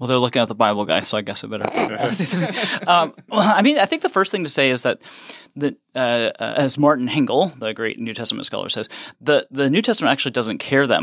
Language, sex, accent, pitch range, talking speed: English, male, American, 105-140 Hz, 230 wpm